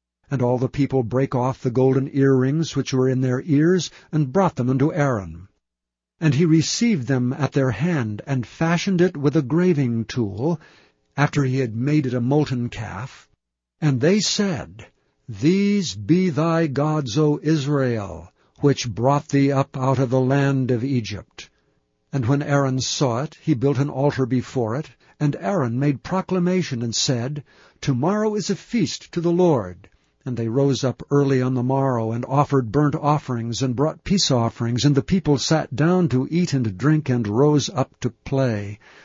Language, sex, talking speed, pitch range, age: English, male, 175 wpm, 125-150 Hz, 60-79